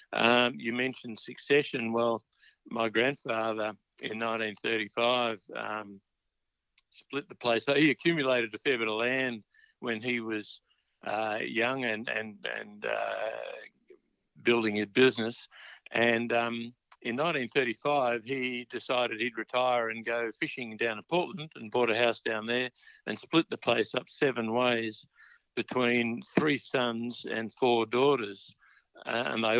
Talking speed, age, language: 140 wpm, 60-79, English